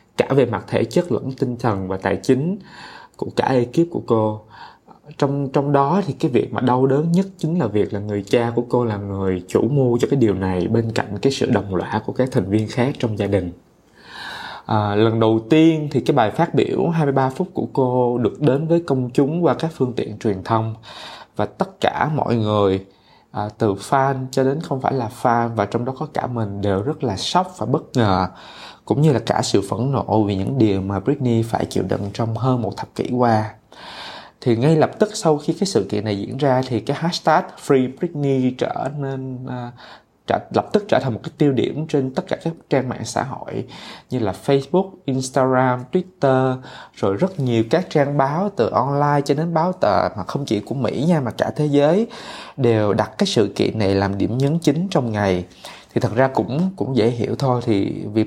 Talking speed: 215 wpm